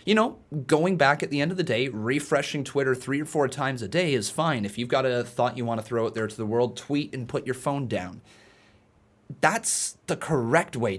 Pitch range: 105-135 Hz